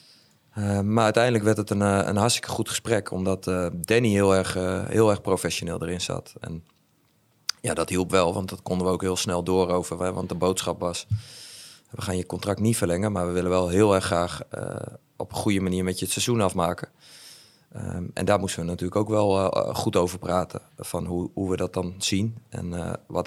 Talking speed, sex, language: 220 wpm, male, Dutch